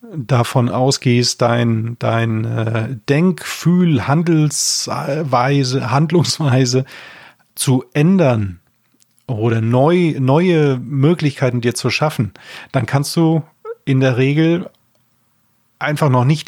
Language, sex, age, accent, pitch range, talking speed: German, male, 30-49, German, 120-150 Hz, 95 wpm